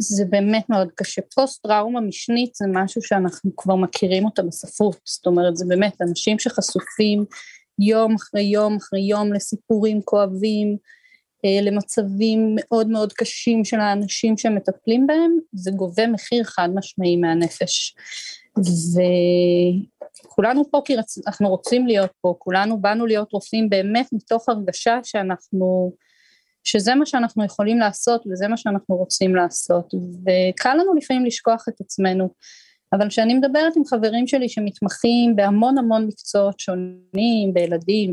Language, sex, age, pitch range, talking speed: Hebrew, female, 30-49, 190-230 Hz, 135 wpm